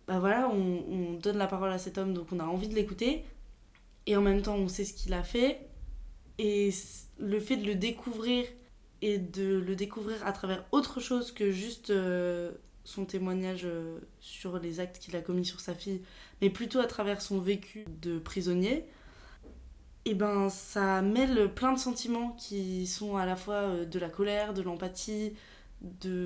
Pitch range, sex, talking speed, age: 175-205 Hz, female, 185 wpm, 20-39